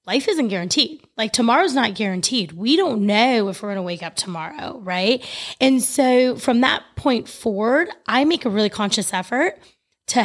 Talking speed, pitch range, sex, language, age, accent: 180 wpm, 210-265 Hz, female, English, 20-39, American